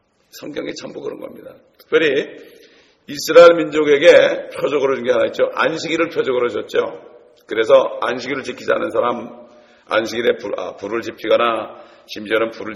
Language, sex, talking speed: English, male, 120 wpm